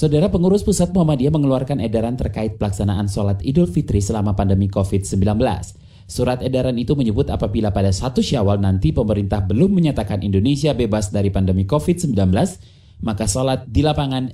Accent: native